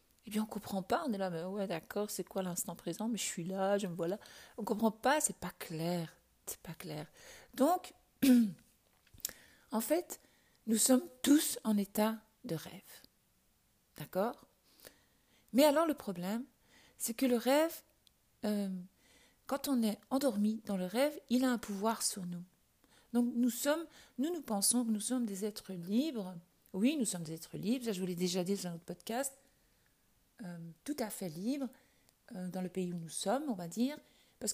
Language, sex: French, female